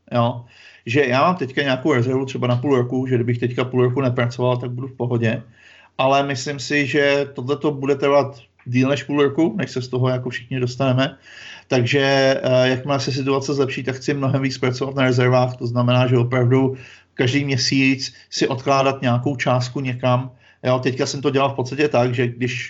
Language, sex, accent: Czech, male, native